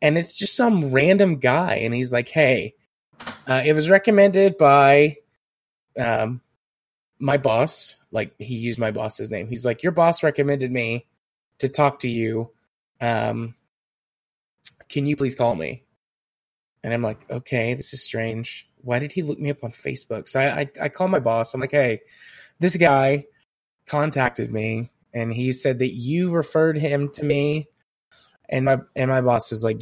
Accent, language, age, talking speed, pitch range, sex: American, English, 20-39, 170 wpm, 120-150 Hz, male